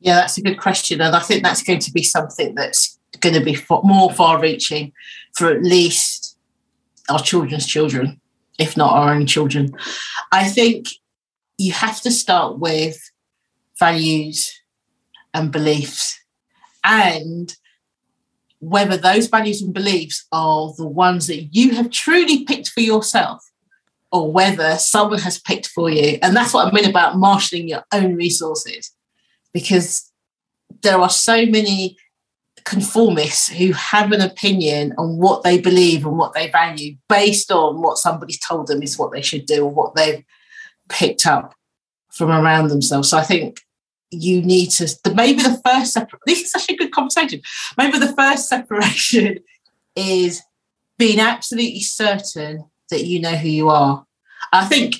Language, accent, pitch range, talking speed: English, British, 160-215 Hz, 155 wpm